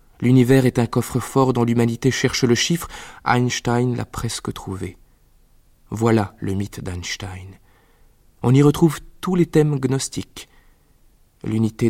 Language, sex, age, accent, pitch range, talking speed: French, male, 20-39, French, 110-140 Hz, 125 wpm